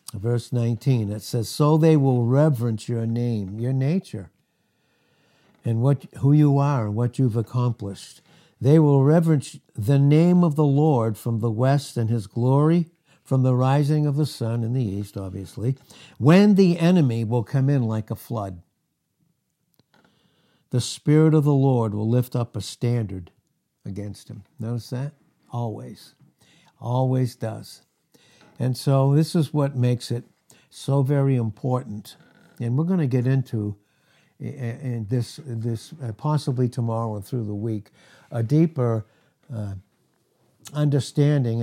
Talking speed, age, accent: 140 wpm, 60-79, American